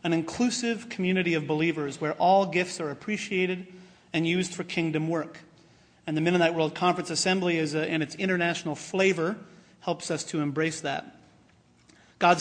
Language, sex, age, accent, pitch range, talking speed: English, male, 40-59, American, 160-190 Hz, 150 wpm